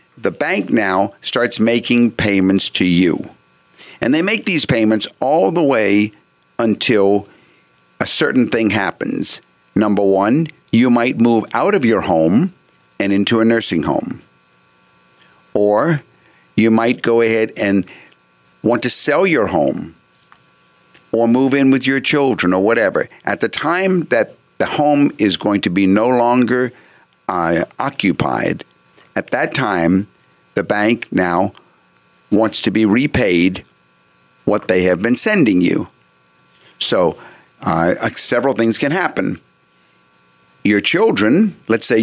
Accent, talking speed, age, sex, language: American, 135 wpm, 50-69, male, English